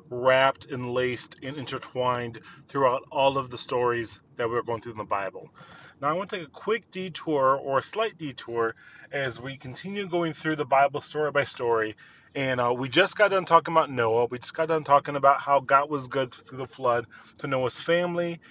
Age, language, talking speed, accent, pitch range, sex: 30-49, English, 210 wpm, American, 125-155 Hz, male